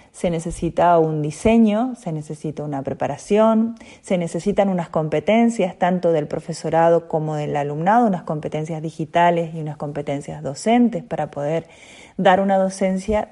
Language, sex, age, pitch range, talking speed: Spanish, female, 30-49, 160-200 Hz, 135 wpm